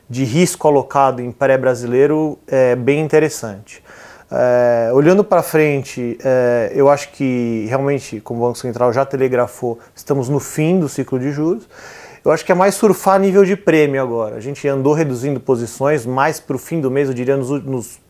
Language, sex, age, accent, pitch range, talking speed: Portuguese, male, 30-49, Brazilian, 130-160 Hz, 170 wpm